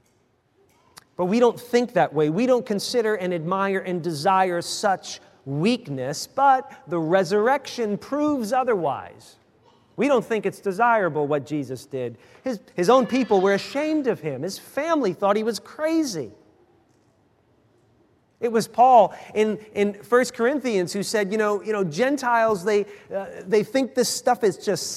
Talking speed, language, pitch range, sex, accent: 155 wpm, English, 175-230 Hz, male, American